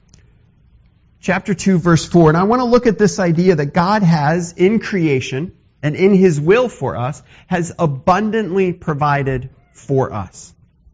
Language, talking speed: English, 155 wpm